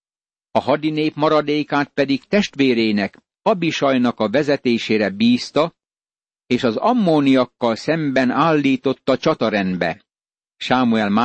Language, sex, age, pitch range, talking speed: Hungarian, male, 60-79, 125-150 Hz, 85 wpm